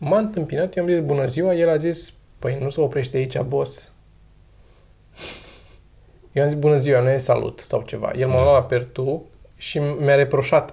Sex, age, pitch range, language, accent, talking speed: male, 20-39, 125-175 Hz, Romanian, native, 190 wpm